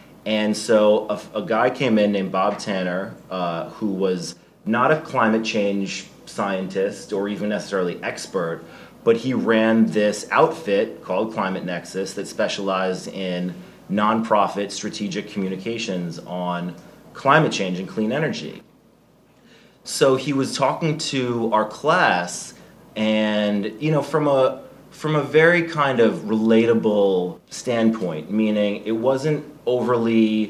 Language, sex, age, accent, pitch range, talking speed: English, male, 30-49, American, 100-115 Hz, 130 wpm